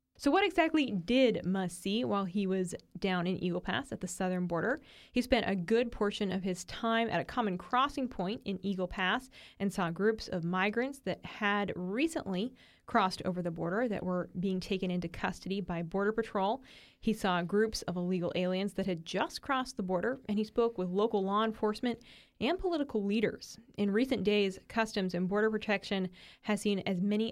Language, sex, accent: English, female, American